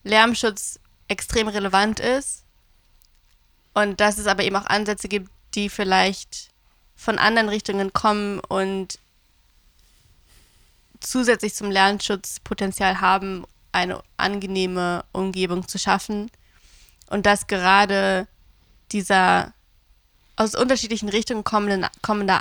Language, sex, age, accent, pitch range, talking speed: German, female, 20-39, German, 185-210 Hz, 100 wpm